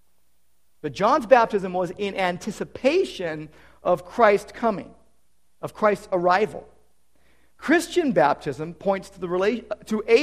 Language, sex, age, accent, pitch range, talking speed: English, male, 50-69, American, 140-220 Hz, 115 wpm